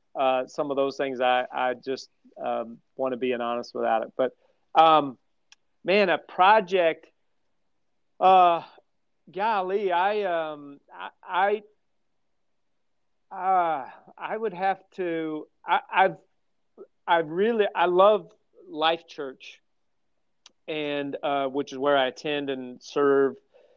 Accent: American